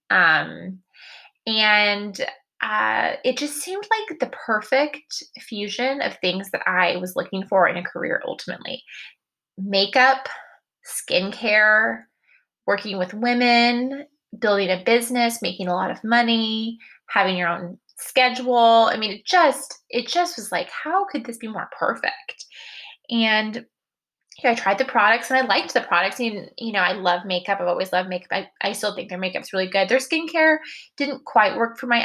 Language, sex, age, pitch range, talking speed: English, female, 20-39, 195-260 Hz, 165 wpm